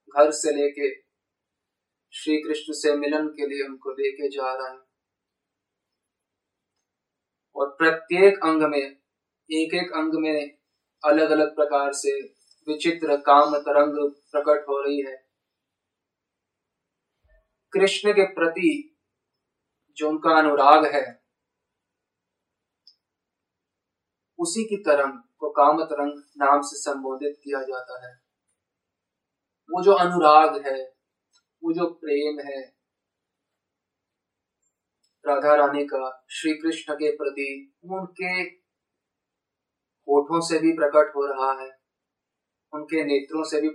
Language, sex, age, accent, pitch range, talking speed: Hindi, male, 20-39, native, 140-160 Hz, 100 wpm